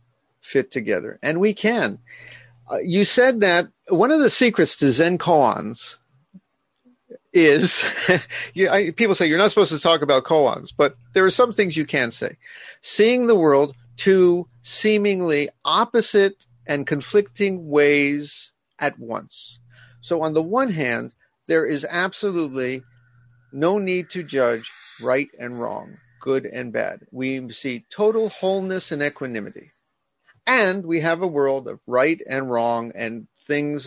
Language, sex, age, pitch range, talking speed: English, male, 50-69, 130-190 Hz, 140 wpm